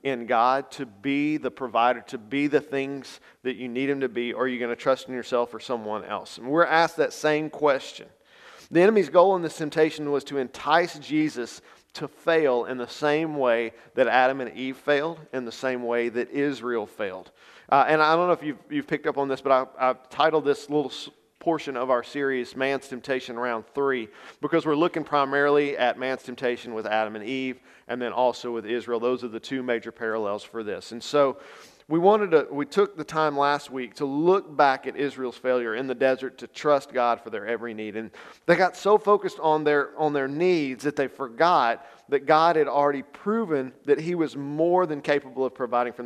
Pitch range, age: 125-150 Hz, 40-59